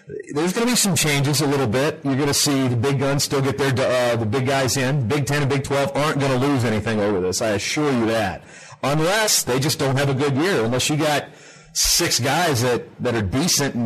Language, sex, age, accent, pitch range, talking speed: English, male, 40-59, American, 120-150 Hz, 250 wpm